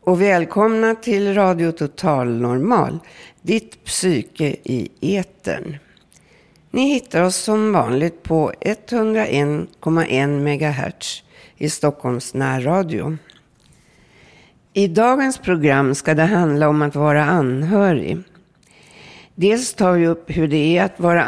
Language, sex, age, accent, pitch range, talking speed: Swedish, female, 60-79, native, 150-195 Hz, 115 wpm